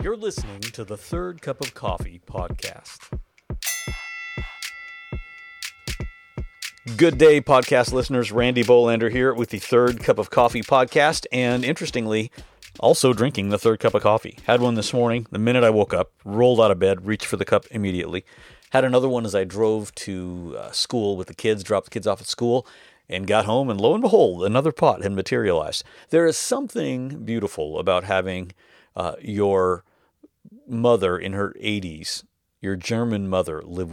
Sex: male